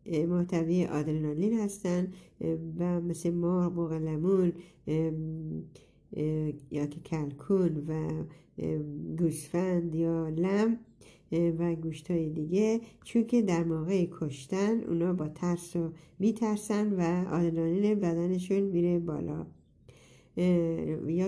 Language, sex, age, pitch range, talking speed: Persian, female, 60-79, 160-195 Hz, 85 wpm